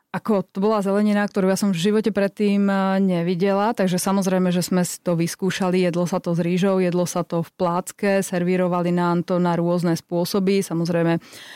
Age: 30-49